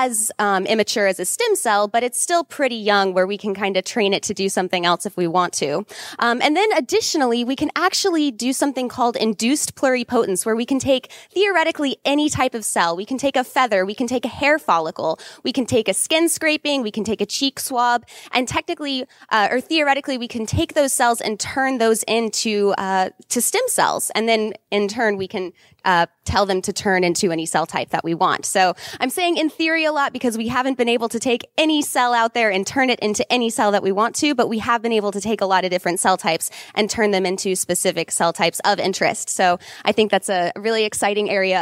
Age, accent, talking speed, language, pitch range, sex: 20-39, American, 240 wpm, English, 195-260 Hz, female